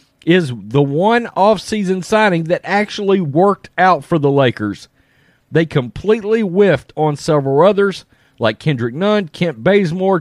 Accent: American